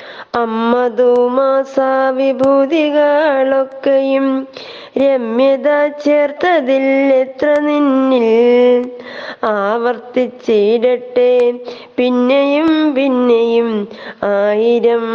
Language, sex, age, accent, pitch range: Malayalam, female, 20-39, native, 230-270 Hz